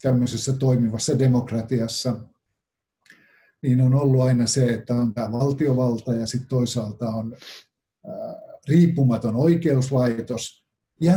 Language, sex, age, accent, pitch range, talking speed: Finnish, male, 50-69, native, 120-145 Hz, 105 wpm